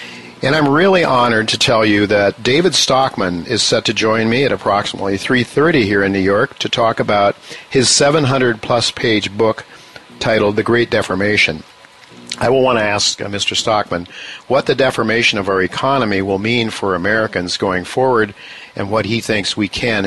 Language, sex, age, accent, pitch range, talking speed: English, male, 50-69, American, 100-125 Hz, 175 wpm